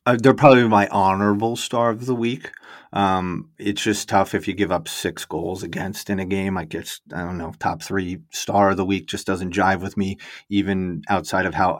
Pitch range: 95-105 Hz